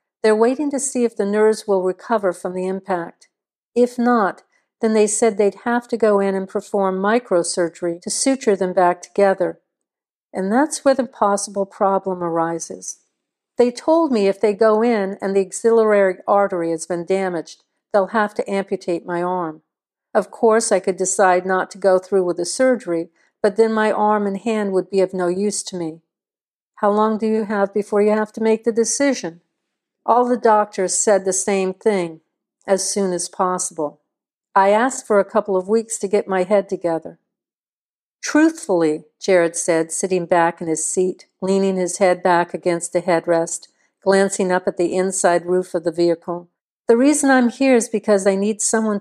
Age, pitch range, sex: 50-69, 180-220 Hz, female